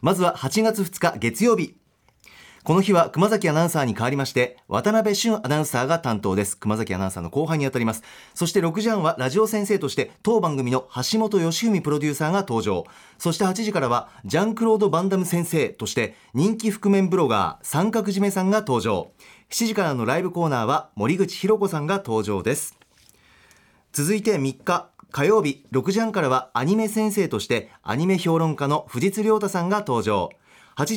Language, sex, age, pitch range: Japanese, male, 40-59, 140-205 Hz